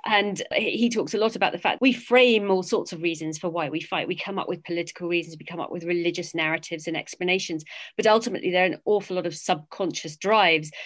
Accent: British